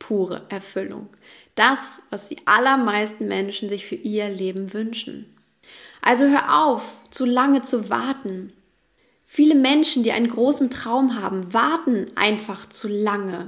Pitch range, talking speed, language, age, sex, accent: 205-255 Hz, 135 wpm, German, 20-39, female, German